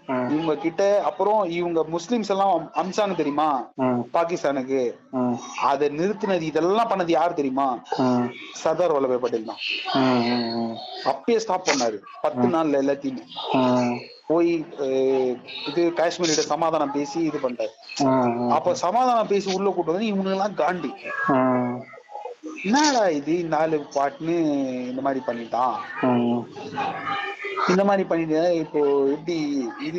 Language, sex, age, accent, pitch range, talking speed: Tamil, male, 30-49, native, 130-185 Hz, 50 wpm